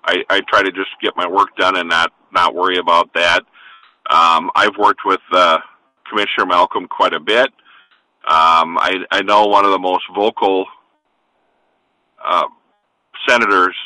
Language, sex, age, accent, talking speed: English, male, 40-59, American, 155 wpm